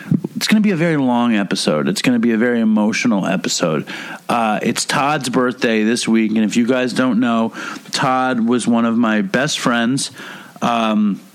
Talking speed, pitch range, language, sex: 190 wpm, 110-180 Hz, English, male